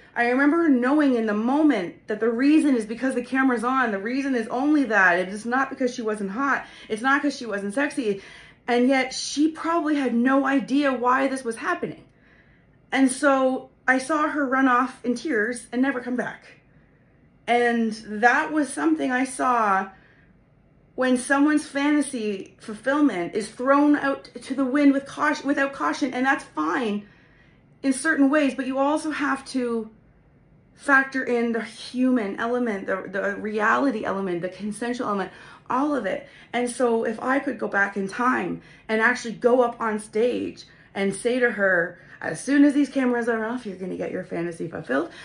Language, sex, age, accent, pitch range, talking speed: English, female, 30-49, American, 220-275 Hz, 180 wpm